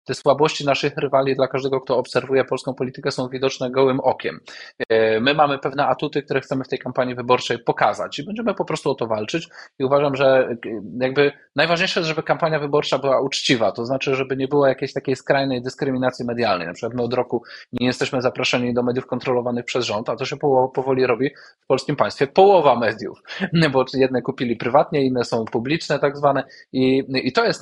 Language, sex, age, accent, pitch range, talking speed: Polish, male, 20-39, native, 120-145 Hz, 190 wpm